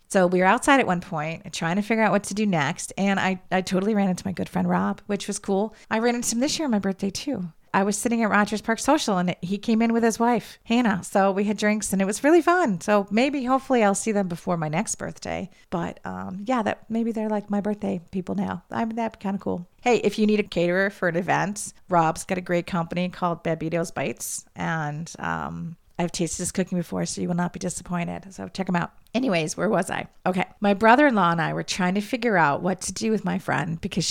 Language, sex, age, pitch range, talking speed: English, female, 40-59, 175-215 Hz, 255 wpm